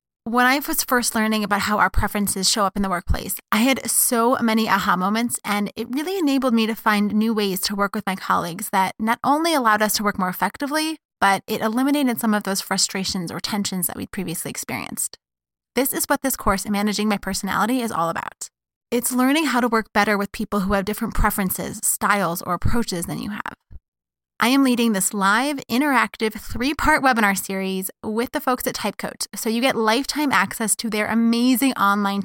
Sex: female